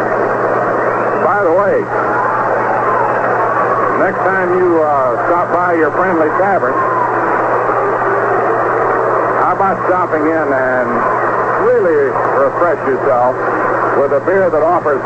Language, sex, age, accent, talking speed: English, male, 60-79, American, 105 wpm